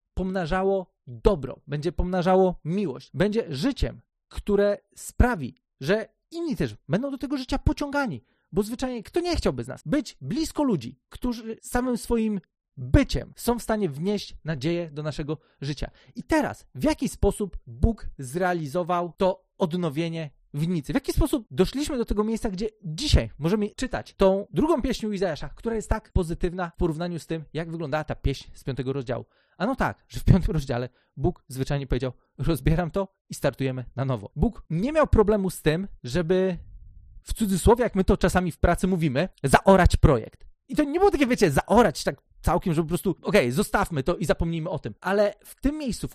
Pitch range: 160-215 Hz